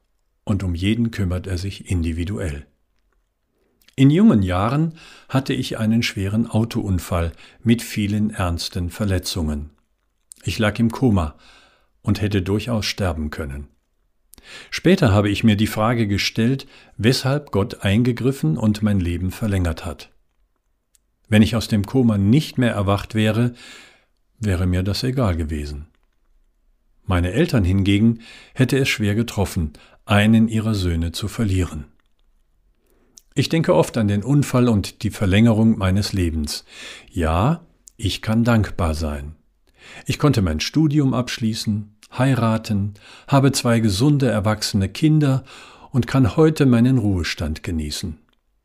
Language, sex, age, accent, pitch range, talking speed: German, male, 50-69, German, 90-125 Hz, 125 wpm